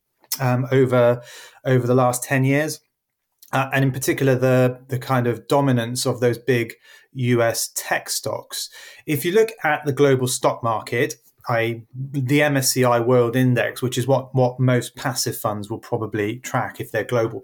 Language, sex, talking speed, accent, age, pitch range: English, male, 165 wpm, British, 30-49, 120-140 Hz